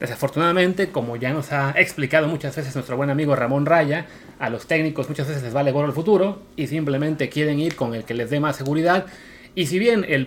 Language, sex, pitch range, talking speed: Spanish, male, 130-165 Hz, 220 wpm